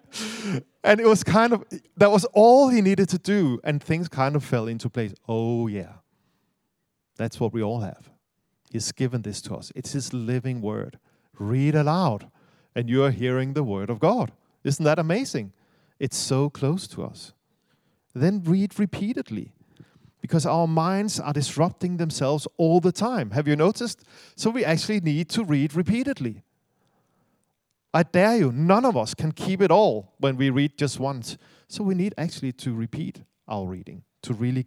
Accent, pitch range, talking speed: German, 125-185 Hz, 175 wpm